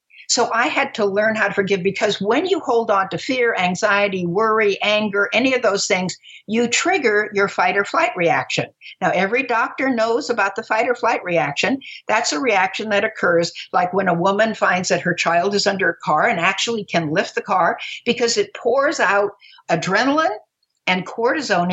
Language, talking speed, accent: English, 190 wpm, American